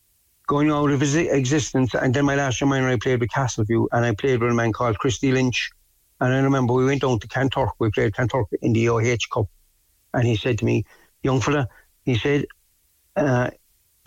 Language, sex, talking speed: English, male, 205 wpm